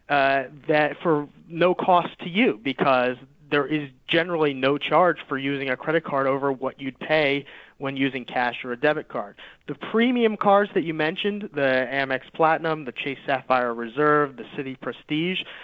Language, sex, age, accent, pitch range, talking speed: English, male, 30-49, American, 135-160 Hz, 175 wpm